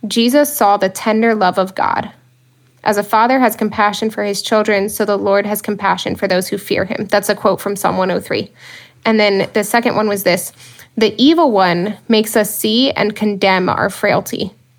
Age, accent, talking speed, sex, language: 10-29, American, 195 wpm, female, English